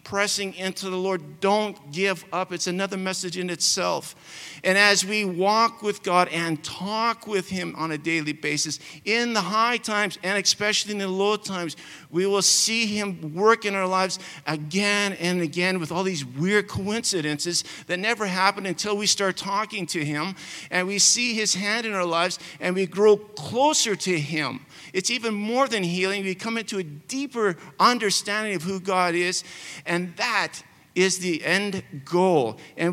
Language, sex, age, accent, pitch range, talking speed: English, male, 50-69, American, 170-210 Hz, 180 wpm